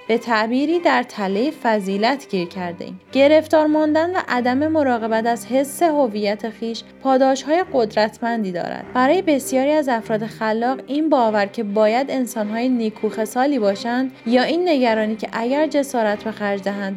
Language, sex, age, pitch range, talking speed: Persian, female, 20-39, 215-280 Hz, 140 wpm